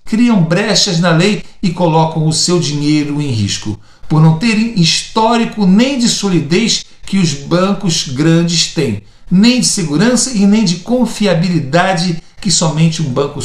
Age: 50-69